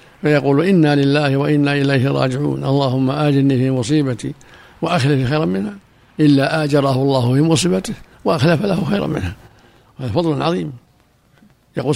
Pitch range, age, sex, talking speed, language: 125-160 Hz, 60-79, male, 130 wpm, Arabic